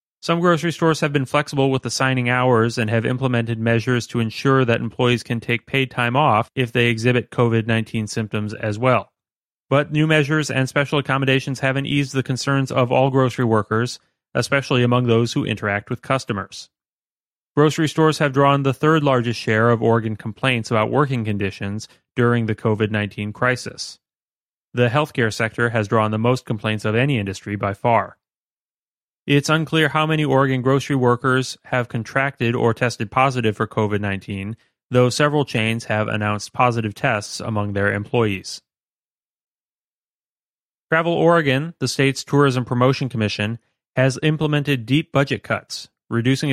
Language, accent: English, American